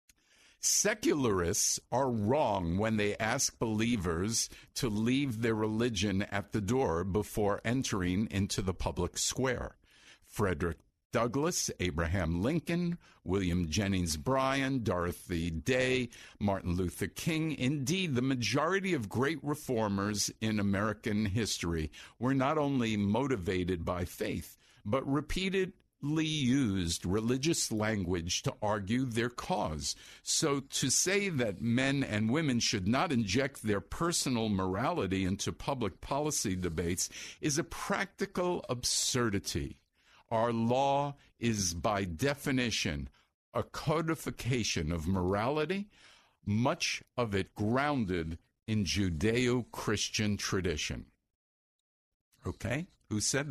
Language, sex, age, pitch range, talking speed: English, male, 50-69, 95-135 Hz, 110 wpm